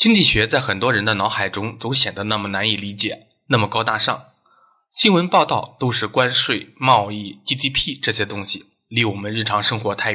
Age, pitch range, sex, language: 20-39, 105-135 Hz, male, Chinese